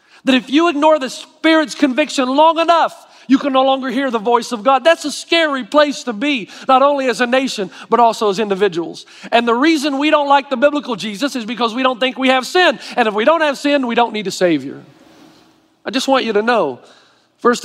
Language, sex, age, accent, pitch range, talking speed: English, male, 40-59, American, 195-265 Hz, 230 wpm